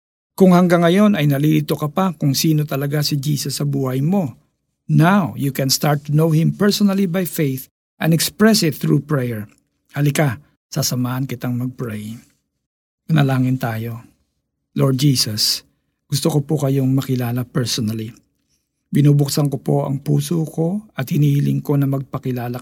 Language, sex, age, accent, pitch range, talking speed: Filipino, male, 50-69, native, 130-160 Hz, 145 wpm